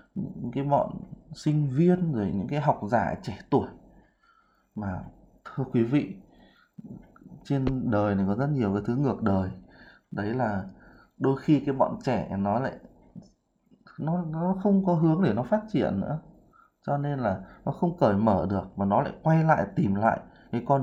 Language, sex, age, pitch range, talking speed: Vietnamese, male, 20-39, 105-155 Hz, 180 wpm